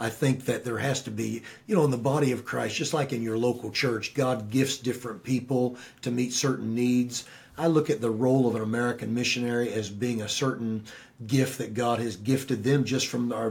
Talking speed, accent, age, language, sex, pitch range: 220 wpm, American, 40-59, English, male, 115-135 Hz